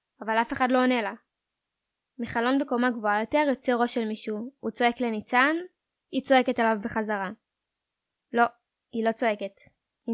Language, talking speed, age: Hebrew, 155 wpm, 10-29